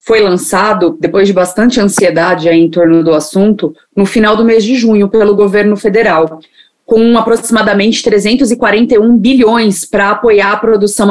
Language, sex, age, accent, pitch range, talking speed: Portuguese, female, 30-49, Brazilian, 205-270 Hz, 150 wpm